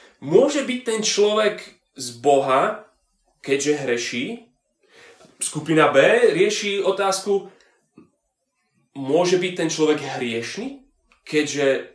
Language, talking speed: Slovak, 90 wpm